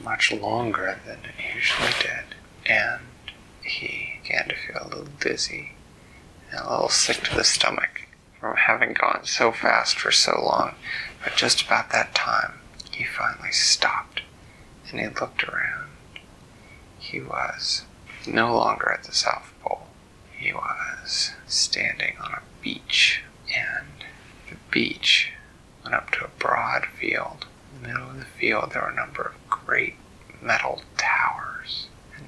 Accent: American